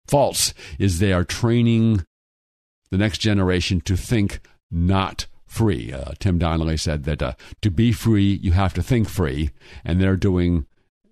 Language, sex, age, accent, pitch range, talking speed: English, male, 50-69, American, 95-115 Hz, 155 wpm